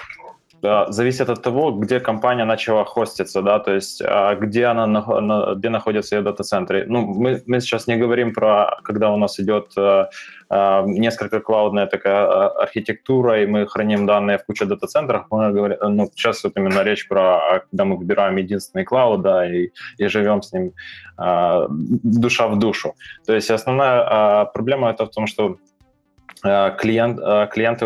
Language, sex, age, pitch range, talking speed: Ukrainian, male, 20-39, 100-115 Hz, 150 wpm